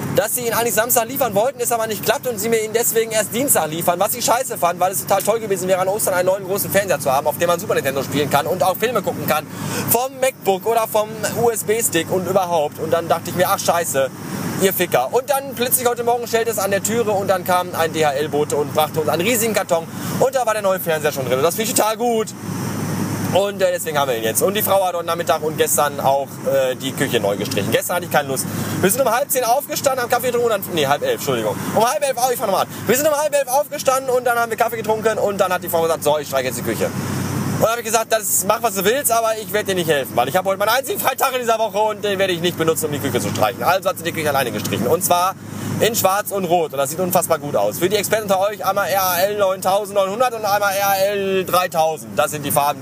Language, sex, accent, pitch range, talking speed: German, male, German, 155-220 Hz, 280 wpm